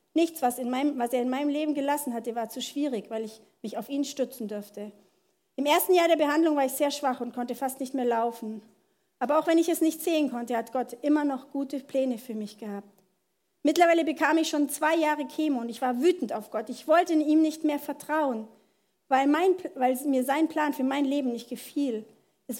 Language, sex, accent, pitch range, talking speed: German, female, German, 235-300 Hz, 225 wpm